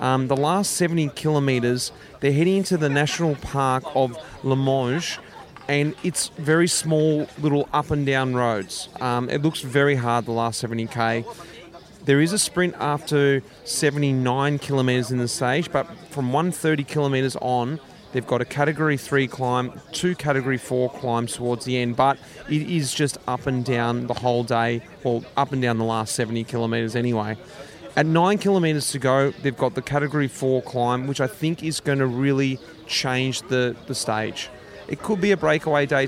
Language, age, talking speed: English, 30-49, 175 wpm